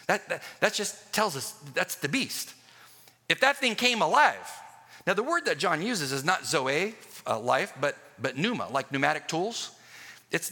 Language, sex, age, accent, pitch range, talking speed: English, male, 50-69, American, 120-175 Hz, 185 wpm